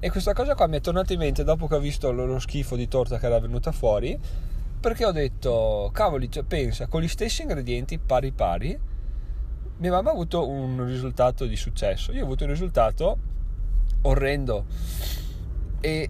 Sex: male